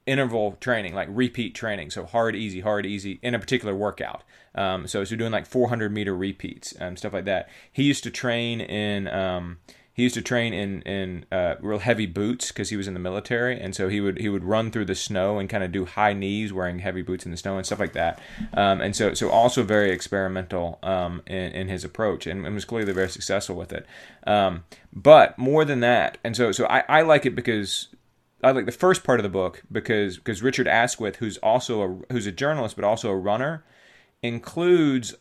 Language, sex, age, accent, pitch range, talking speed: English, male, 20-39, American, 95-125 Hz, 220 wpm